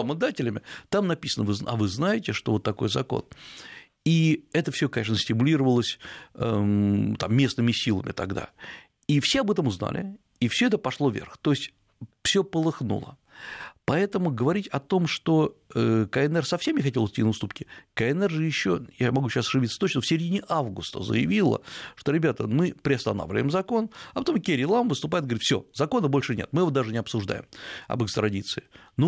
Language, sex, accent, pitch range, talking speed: Russian, male, native, 115-165 Hz, 165 wpm